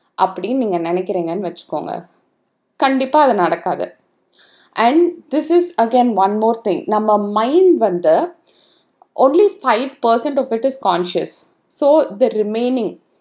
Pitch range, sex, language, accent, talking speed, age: 185-265 Hz, female, Tamil, native, 125 wpm, 20-39